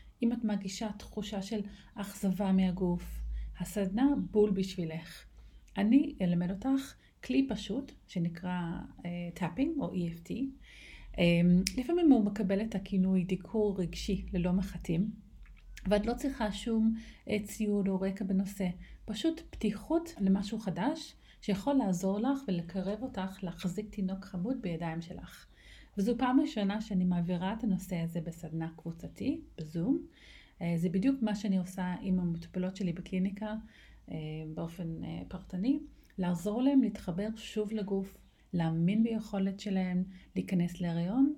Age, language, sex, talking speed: 30-49, Hebrew, female, 125 wpm